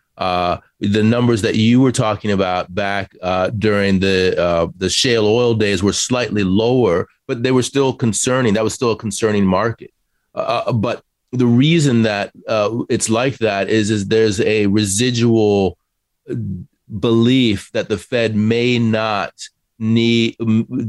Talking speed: 150 wpm